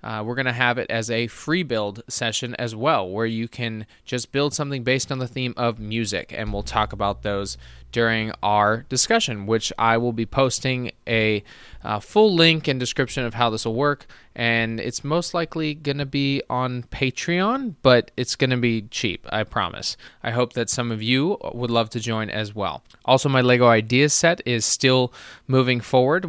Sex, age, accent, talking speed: male, 20-39, American, 200 wpm